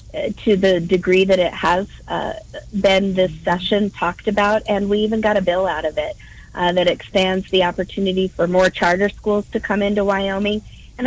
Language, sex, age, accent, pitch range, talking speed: English, female, 40-59, American, 175-200 Hz, 190 wpm